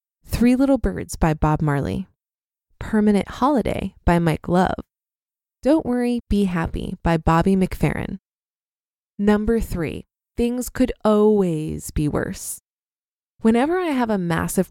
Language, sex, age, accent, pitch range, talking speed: English, female, 20-39, American, 175-235 Hz, 120 wpm